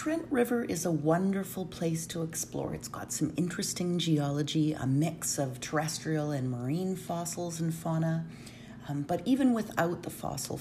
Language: English